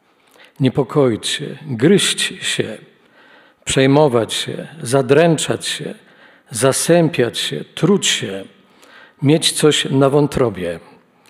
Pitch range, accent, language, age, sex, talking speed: 140-175 Hz, native, Polish, 50-69, male, 85 wpm